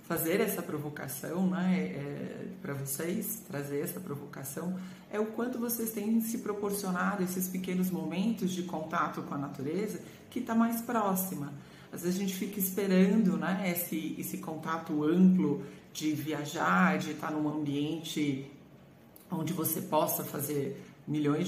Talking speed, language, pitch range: 140 wpm, Portuguese, 155-195 Hz